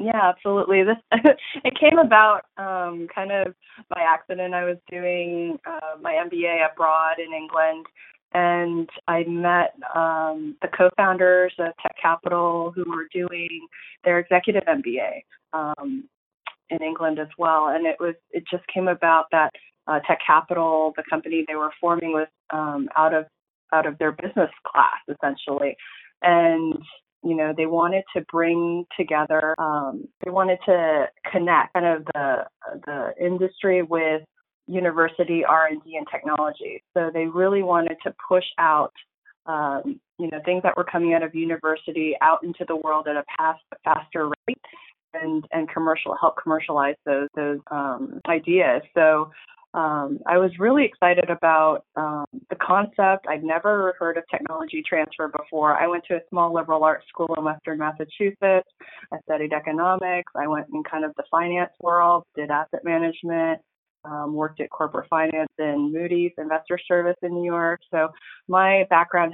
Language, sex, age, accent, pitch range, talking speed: English, female, 20-39, American, 155-180 Hz, 160 wpm